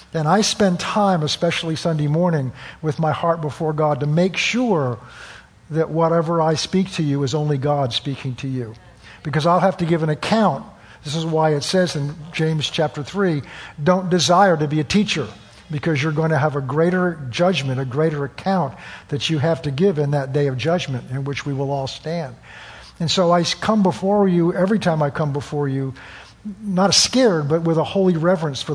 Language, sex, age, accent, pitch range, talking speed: English, male, 50-69, American, 145-180 Hz, 200 wpm